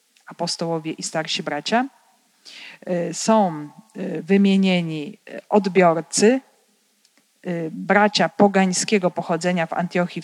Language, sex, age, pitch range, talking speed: Polish, female, 40-59, 175-220 Hz, 70 wpm